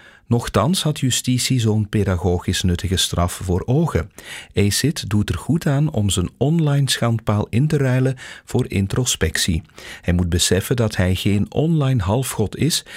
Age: 40-59